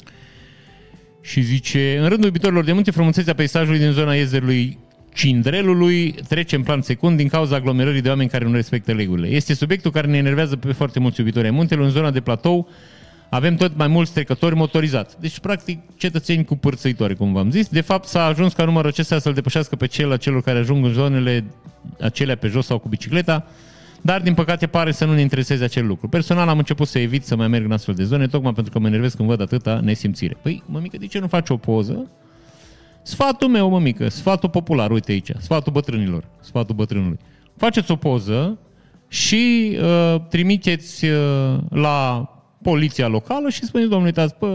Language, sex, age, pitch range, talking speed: Romanian, male, 30-49, 125-175 Hz, 185 wpm